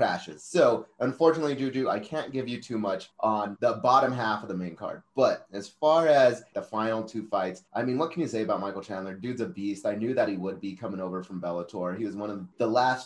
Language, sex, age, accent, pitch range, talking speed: English, male, 30-49, American, 100-125 Hz, 250 wpm